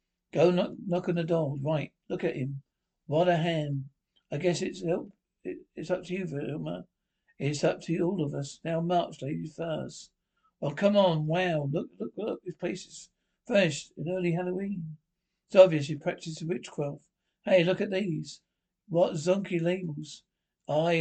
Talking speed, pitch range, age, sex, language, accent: 175 wpm, 160-185 Hz, 60-79, male, English, British